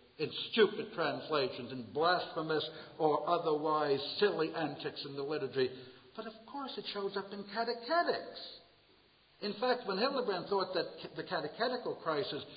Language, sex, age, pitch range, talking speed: English, male, 60-79, 135-220 Hz, 140 wpm